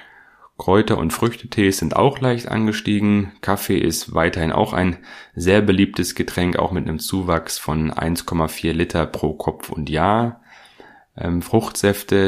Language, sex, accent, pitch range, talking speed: German, male, German, 80-100 Hz, 130 wpm